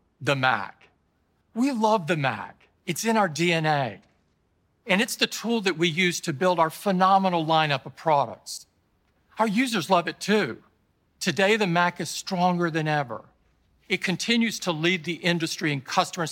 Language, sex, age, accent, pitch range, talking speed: English, male, 50-69, American, 145-190 Hz, 160 wpm